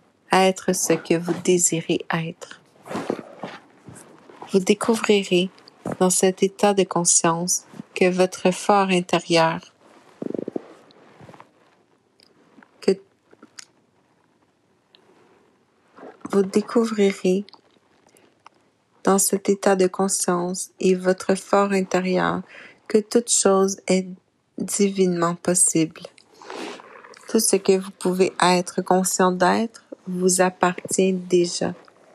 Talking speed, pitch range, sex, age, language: 90 wpm, 180-200 Hz, female, 60-79, French